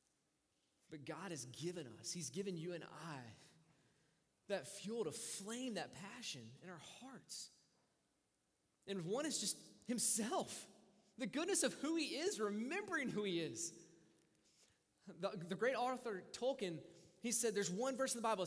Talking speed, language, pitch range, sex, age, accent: 155 wpm, English, 190-275 Hz, male, 20-39, American